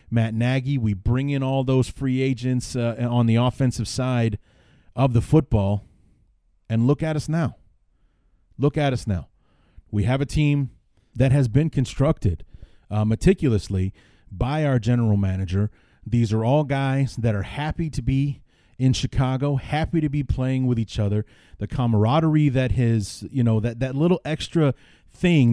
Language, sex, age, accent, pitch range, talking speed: English, male, 30-49, American, 110-135 Hz, 160 wpm